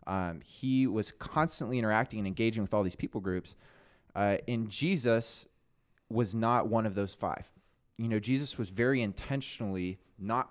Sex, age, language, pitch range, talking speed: male, 20-39, English, 95-120 Hz, 160 wpm